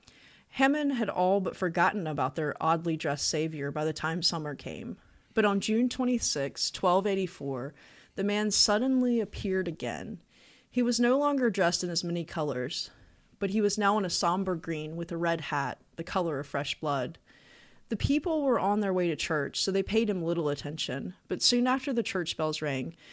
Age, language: 30-49, English